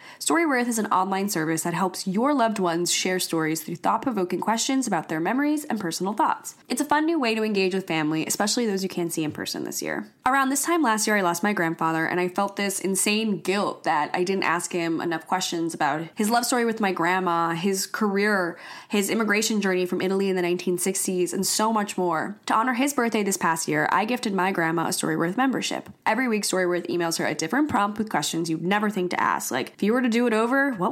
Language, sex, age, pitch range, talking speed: English, female, 10-29, 180-250 Hz, 235 wpm